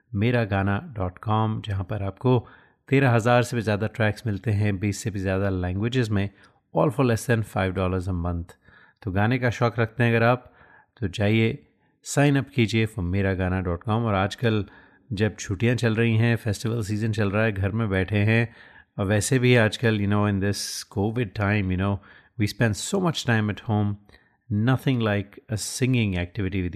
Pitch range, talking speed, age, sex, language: 100-120 Hz, 180 wpm, 30-49, male, Hindi